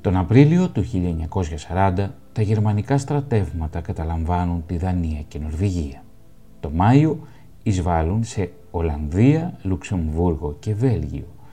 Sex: male